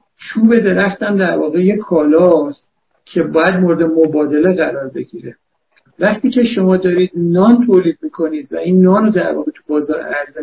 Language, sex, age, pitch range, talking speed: Persian, male, 60-79, 160-195 Hz, 160 wpm